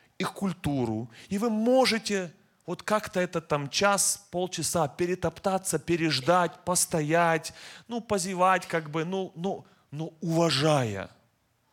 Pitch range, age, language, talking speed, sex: 130-195 Hz, 30-49, Russian, 115 wpm, male